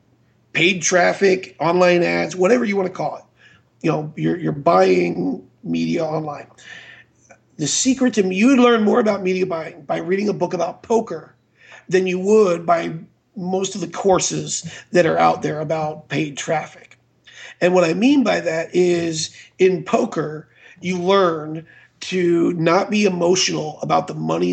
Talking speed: 160 wpm